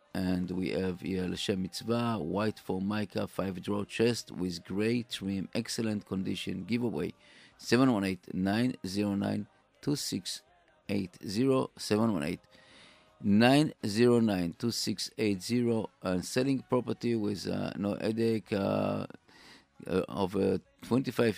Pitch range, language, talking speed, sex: 100-120 Hz, English, 85 wpm, male